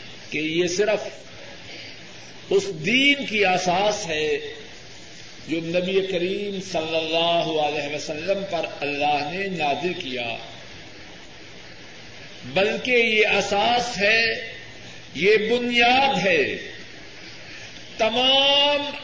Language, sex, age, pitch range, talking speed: Urdu, male, 50-69, 180-255 Hz, 90 wpm